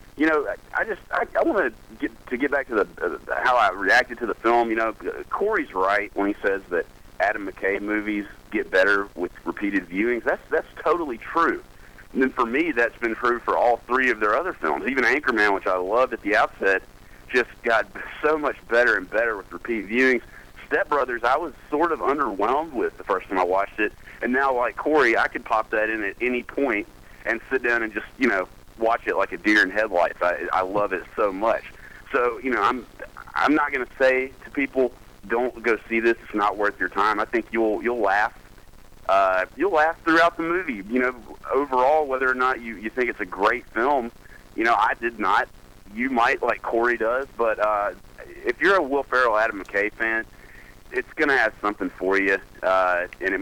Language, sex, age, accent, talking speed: English, male, 40-59, American, 215 wpm